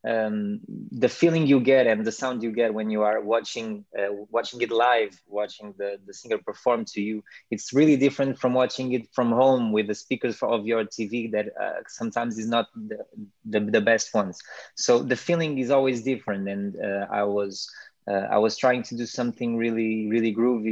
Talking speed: 205 wpm